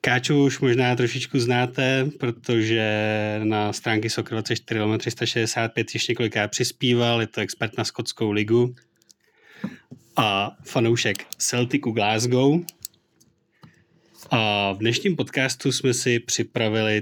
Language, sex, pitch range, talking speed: Czech, male, 105-120 Hz, 105 wpm